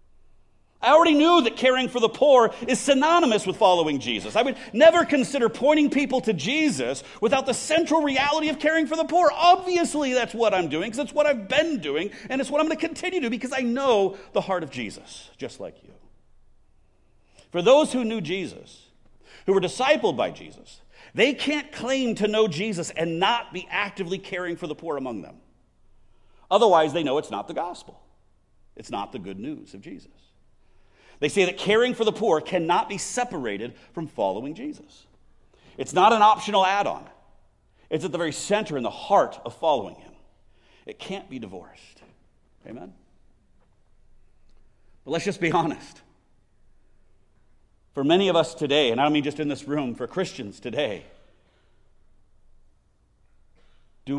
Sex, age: male, 50-69